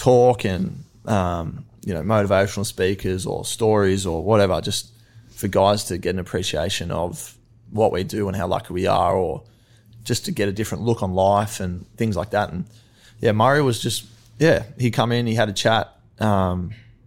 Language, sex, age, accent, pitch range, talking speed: English, male, 20-39, Australian, 95-115 Hz, 190 wpm